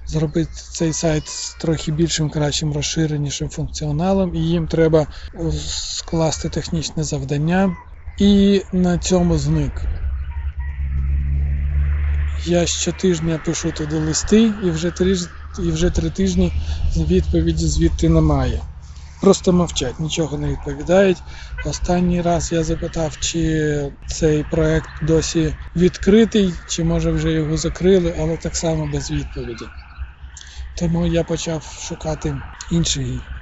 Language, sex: Ukrainian, male